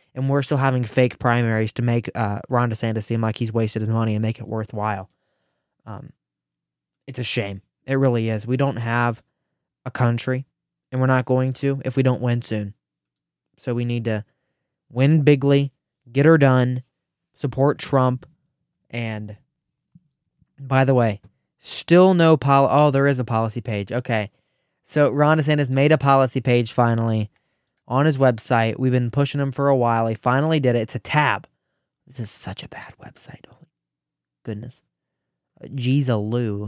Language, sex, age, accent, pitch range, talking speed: English, male, 20-39, American, 115-140 Hz, 165 wpm